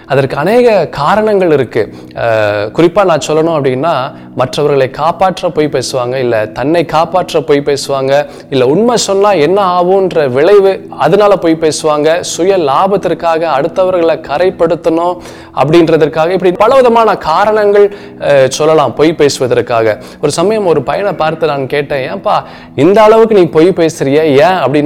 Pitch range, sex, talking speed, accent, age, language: 120-170 Hz, male, 130 wpm, native, 20-39, Tamil